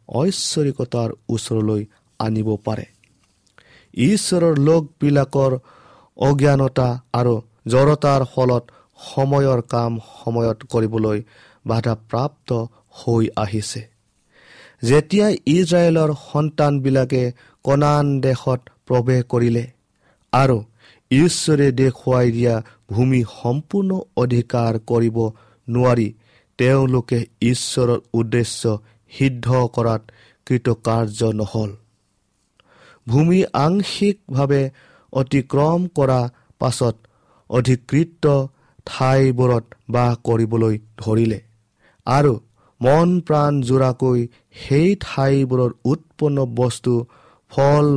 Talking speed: 85 wpm